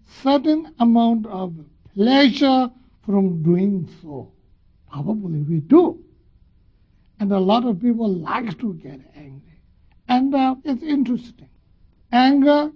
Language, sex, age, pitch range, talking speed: English, male, 60-79, 180-260 Hz, 115 wpm